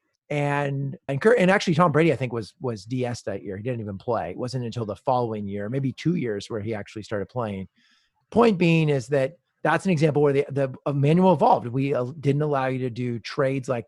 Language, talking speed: English, 230 wpm